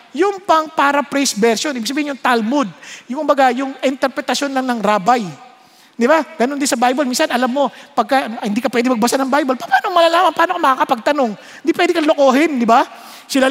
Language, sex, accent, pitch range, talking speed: English, male, Filipino, 240-310 Hz, 190 wpm